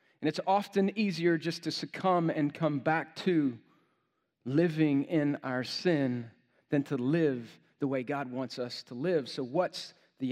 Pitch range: 150-185 Hz